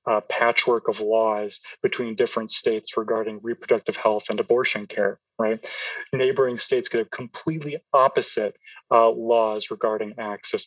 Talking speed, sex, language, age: 135 wpm, male, English, 30-49